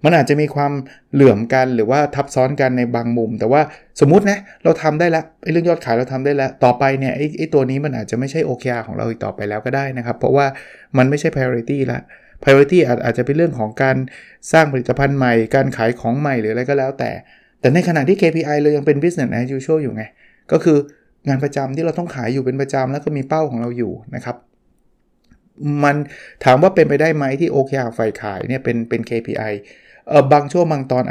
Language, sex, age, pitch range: Thai, male, 20-39, 115-145 Hz